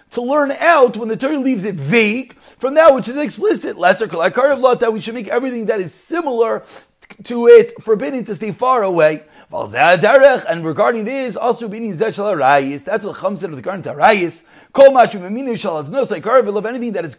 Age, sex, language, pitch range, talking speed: 30-49, male, English, 195-270 Hz, 180 wpm